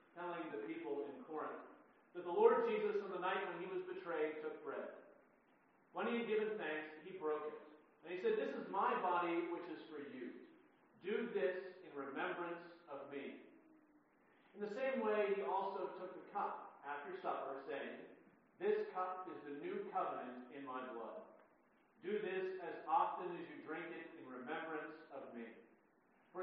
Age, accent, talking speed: 40-59, American, 175 wpm